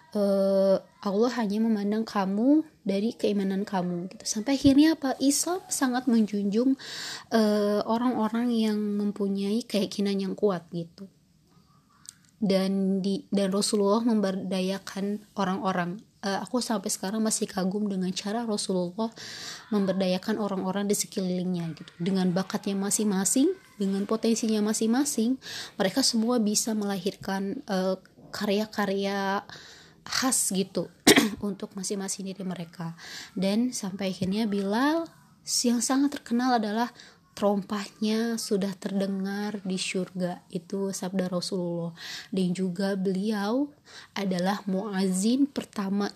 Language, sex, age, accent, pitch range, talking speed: Indonesian, female, 20-39, native, 190-220 Hz, 110 wpm